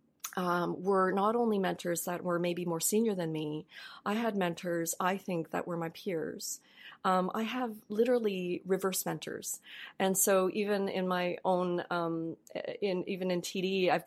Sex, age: female, 30-49